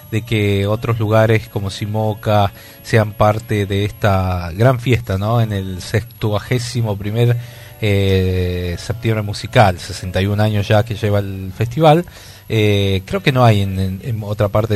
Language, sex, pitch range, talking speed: Spanish, male, 100-115 Hz, 145 wpm